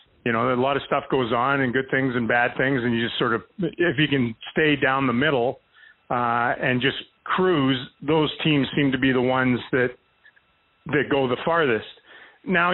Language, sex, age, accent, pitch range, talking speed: English, male, 40-59, American, 130-160 Hz, 205 wpm